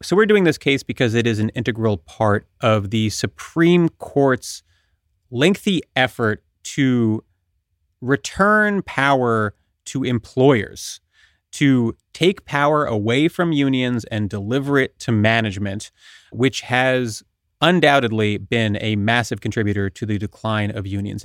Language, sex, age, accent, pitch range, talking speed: English, male, 30-49, American, 105-135 Hz, 125 wpm